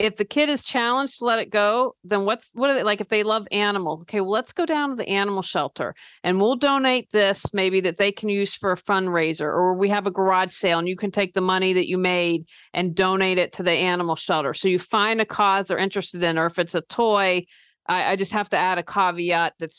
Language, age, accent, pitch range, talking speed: English, 40-59, American, 180-210 Hz, 255 wpm